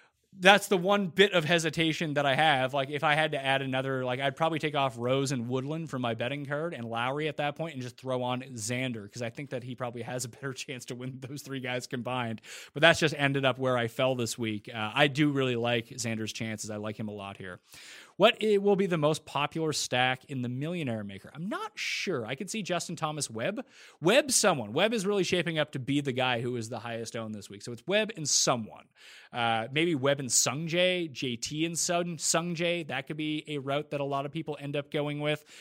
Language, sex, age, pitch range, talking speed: English, male, 30-49, 120-155 Hz, 240 wpm